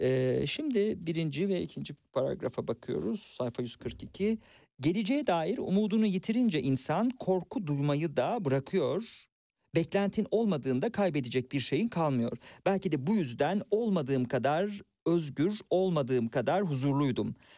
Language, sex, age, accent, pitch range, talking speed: Turkish, male, 50-69, native, 130-200 Hz, 115 wpm